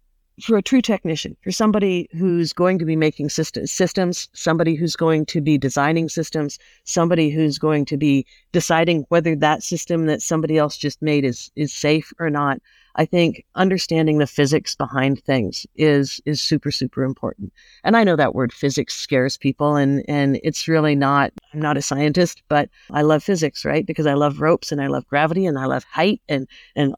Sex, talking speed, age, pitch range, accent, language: female, 190 wpm, 50-69, 150-185 Hz, American, English